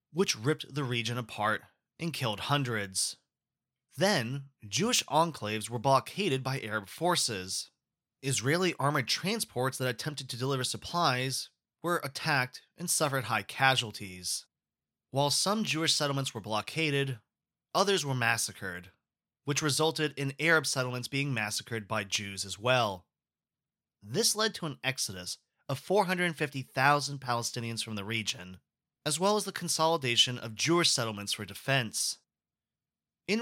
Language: English